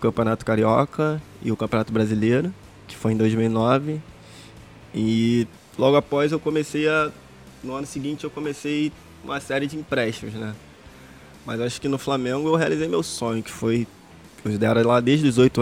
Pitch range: 115-145 Hz